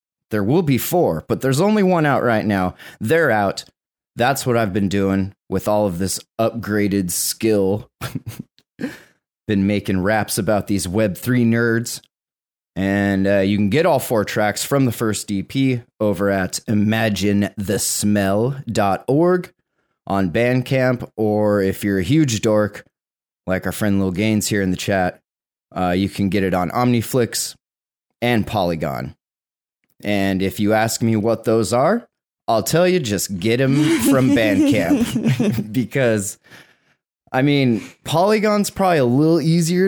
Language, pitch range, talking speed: English, 100-130 Hz, 145 wpm